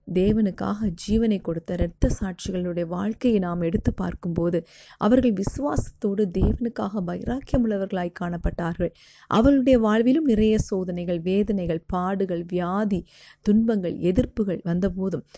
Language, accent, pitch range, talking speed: Tamil, native, 175-215 Hz, 90 wpm